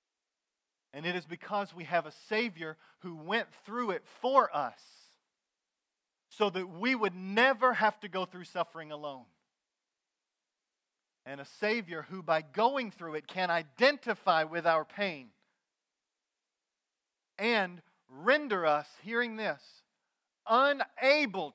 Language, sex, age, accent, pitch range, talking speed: English, male, 40-59, American, 170-250 Hz, 125 wpm